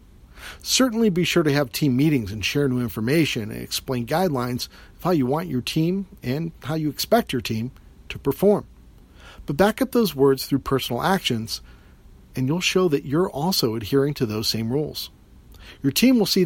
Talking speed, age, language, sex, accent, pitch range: 185 wpm, 50-69, English, male, American, 115-165 Hz